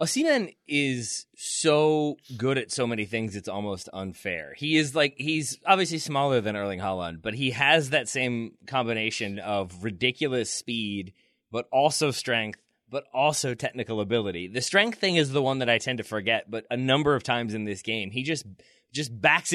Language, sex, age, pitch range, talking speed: English, male, 20-39, 110-145 Hz, 180 wpm